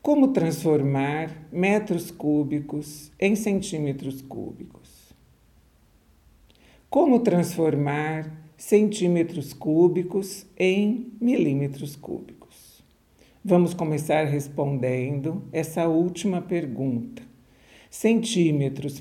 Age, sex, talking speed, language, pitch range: 60-79, male, 65 wpm, Portuguese, 135-170 Hz